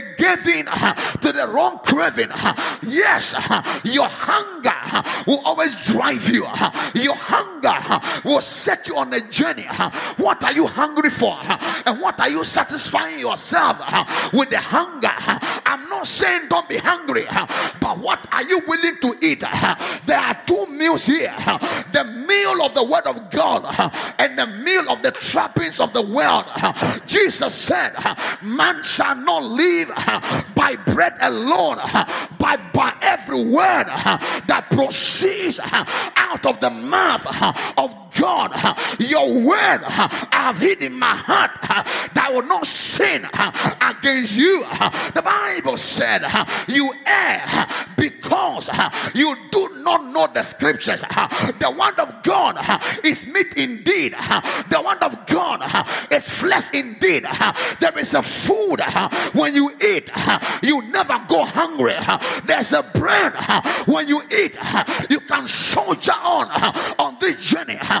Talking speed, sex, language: 150 wpm, male, English